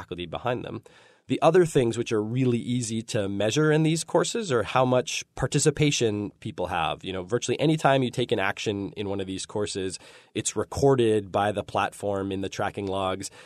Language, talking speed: English, 190 wpm